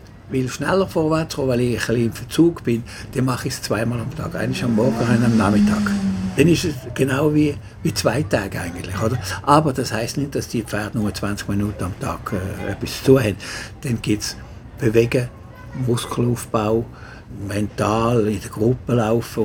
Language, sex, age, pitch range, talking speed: German, male, 60-79, 105-125 Hz, 180 wpm